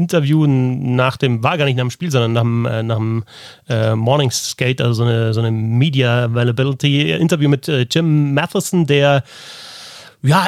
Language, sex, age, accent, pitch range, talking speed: German, male, 30-49, German, 125-155 Hz, 180 wpm